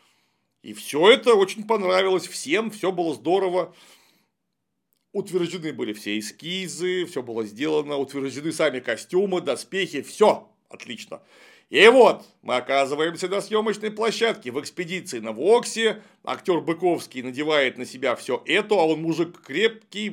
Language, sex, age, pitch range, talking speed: Russian, male, 40-59, 150-210 Hz, 130 wpm